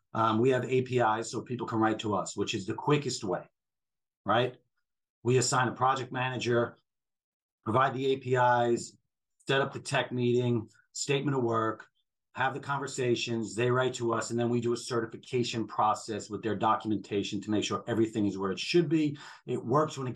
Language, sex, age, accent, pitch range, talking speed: English, male, 40-59, American, 110-130 Hz, 185 wpm